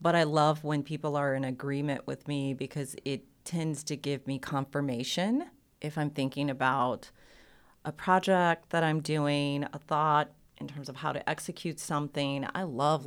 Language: English